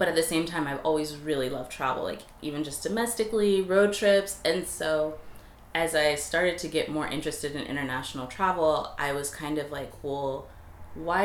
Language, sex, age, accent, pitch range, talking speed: English, female, 20-39, American, 130-155 Hz, 185 wpm